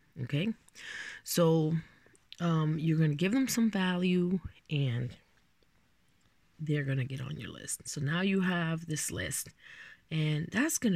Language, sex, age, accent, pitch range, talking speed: English, female, 20-39, American, 150-205 Hz, 150 wpm